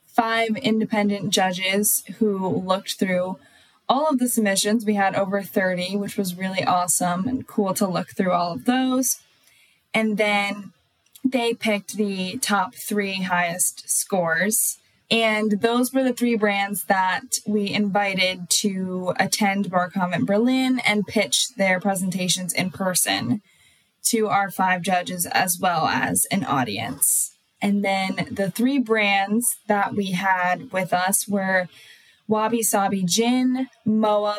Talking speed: 140 wpm